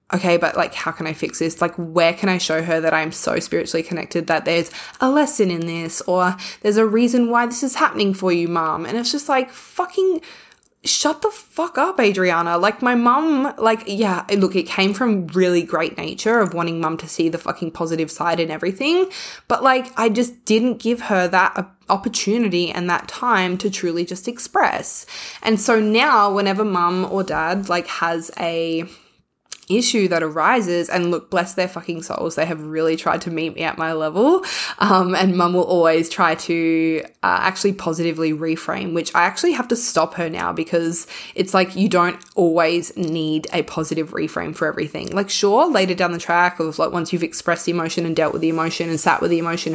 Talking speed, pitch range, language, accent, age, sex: 205 wpm, 165-215 Hz, English, Australian, 20-39, female